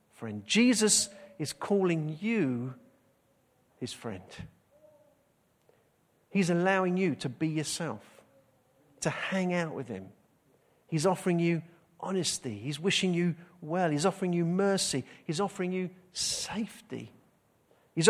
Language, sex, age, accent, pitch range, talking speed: English, male, 50-69, British, 135-205 Hz, 115 wpm